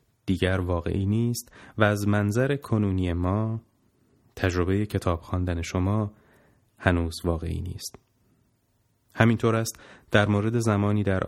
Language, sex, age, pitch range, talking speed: Persian, male, 30-49, 95-115 Hz, 110 wpm